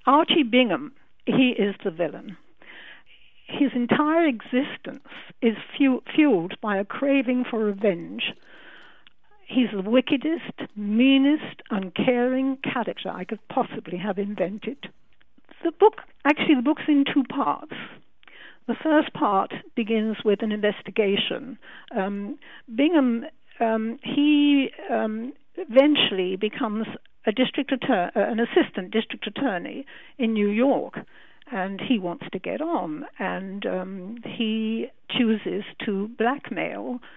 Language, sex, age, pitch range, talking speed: English, female, 60-79, 205-270 Hz, 120 wpm